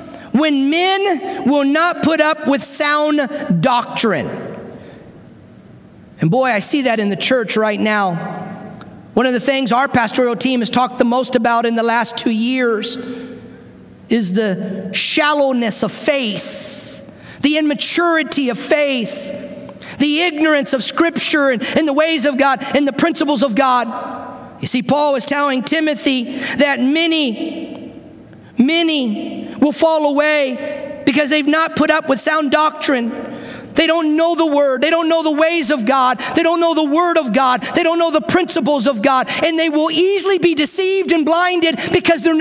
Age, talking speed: 40-59, 165 wpm